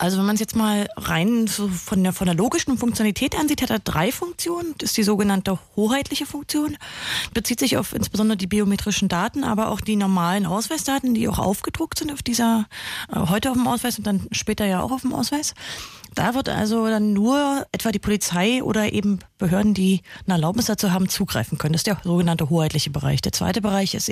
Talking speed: 205 wpm